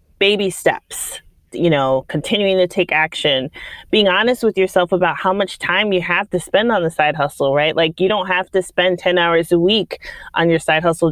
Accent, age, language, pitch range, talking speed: American, 30-49, English, 150-185 Hz, 210 wpm